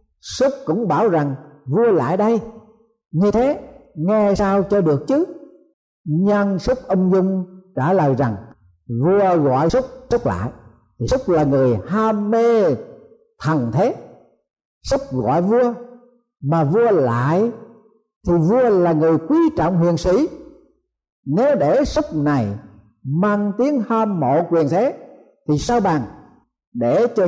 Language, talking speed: Vietnamese, 135 wpm